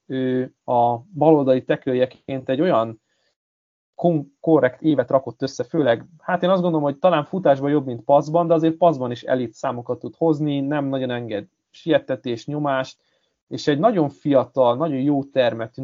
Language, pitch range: Hungarian, 125-155 Hz